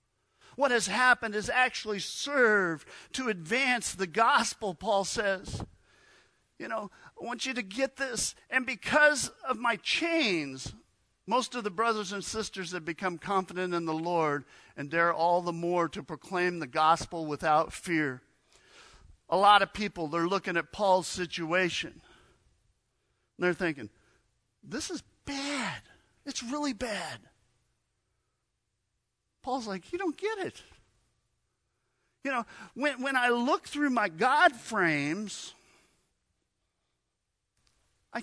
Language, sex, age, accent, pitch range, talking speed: English, male, 50-69, American, 165-255 Hz, 130 wpm